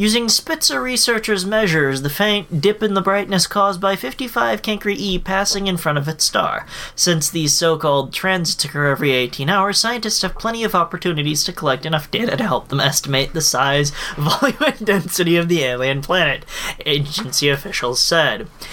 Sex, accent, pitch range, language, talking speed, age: male, American, 150-205 Hz, English, 175 wpm, 20-39